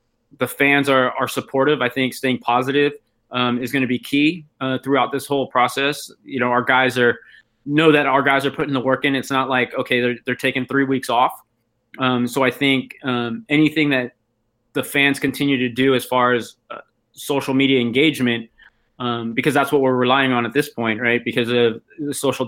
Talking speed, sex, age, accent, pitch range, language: 210 wpm, male, 20-39, American, 125-145 Hz, English